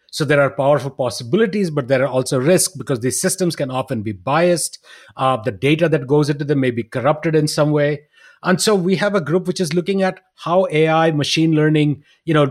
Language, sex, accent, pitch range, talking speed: English, male, Indian, 135-175 Hz, 220 wpm